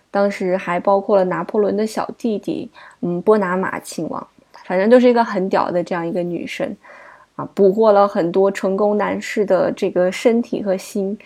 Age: 20-39